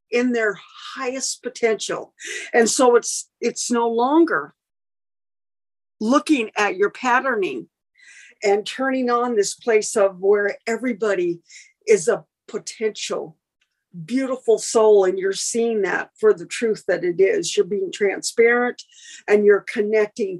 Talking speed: 125 wpm